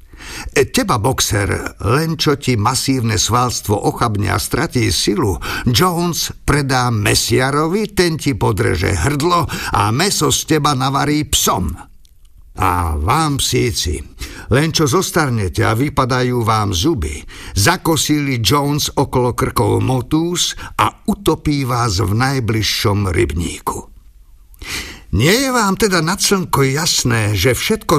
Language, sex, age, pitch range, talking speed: Slovak, male, 50-69, 110-160 Hz, 115 wpm